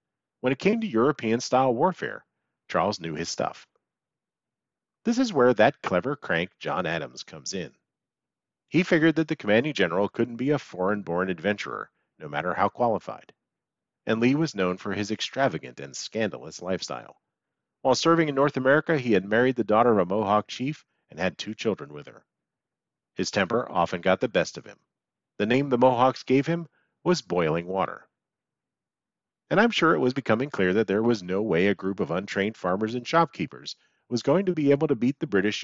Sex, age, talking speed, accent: male, 40-59, 185 wpm, American